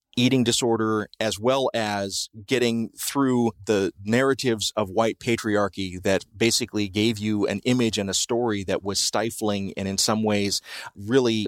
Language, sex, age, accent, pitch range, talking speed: English, male, 30-49, American, 100-125 Hz, 150 wpm